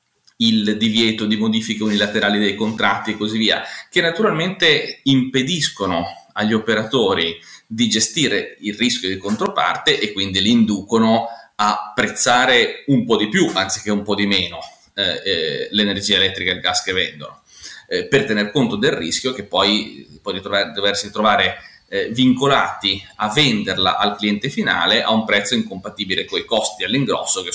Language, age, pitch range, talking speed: Italian, 30-49, 105-140 Hz, 155 wpm